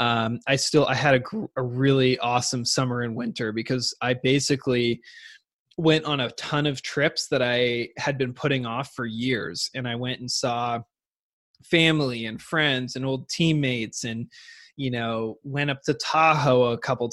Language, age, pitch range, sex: English, 20-39, 120-145 Hz, male